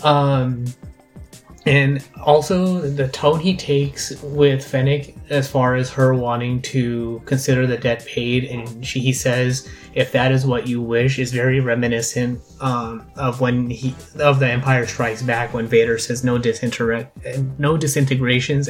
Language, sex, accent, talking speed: English, male, American, 155 wpm